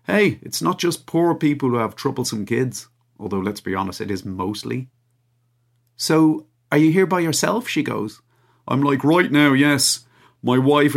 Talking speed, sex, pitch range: 175 wpm, male, 110-140 Hz